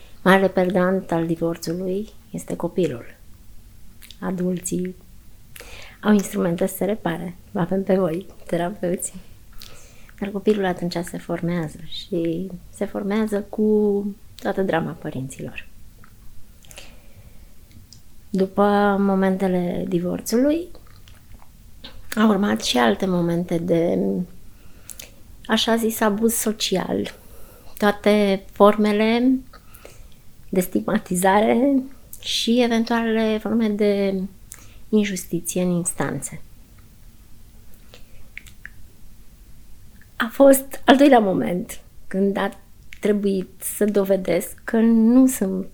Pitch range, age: 165-210 Hz, 20-39